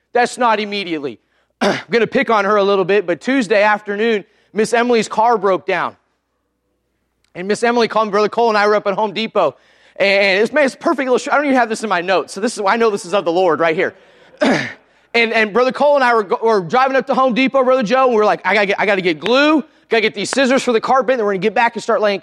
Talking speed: 280 wpm